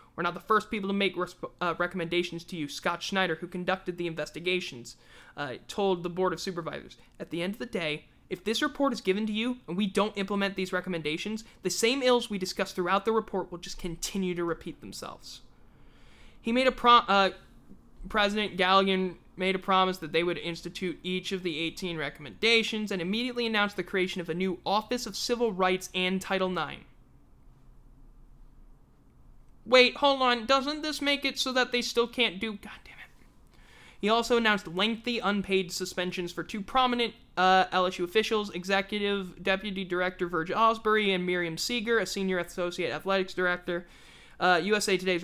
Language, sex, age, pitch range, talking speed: English, male, 20-39, 175-215 Hz, 180 wpm